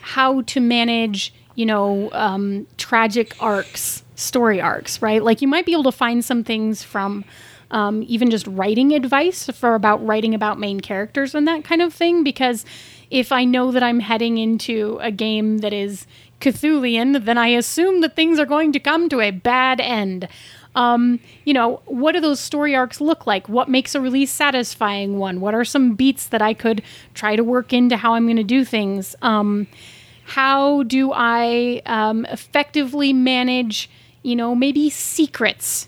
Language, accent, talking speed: English, American, 180 wpm